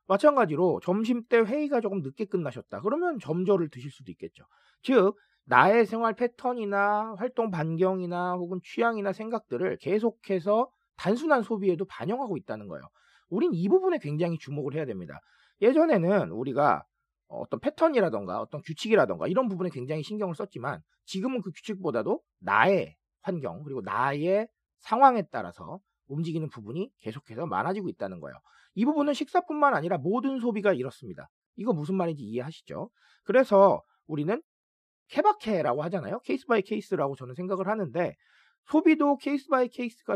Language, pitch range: Korean, 160-235 Hz